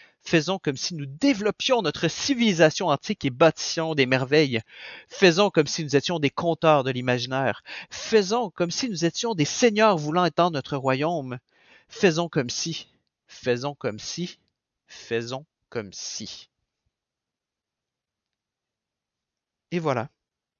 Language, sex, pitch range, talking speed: French, male, 130-175 Hz, 125 wpm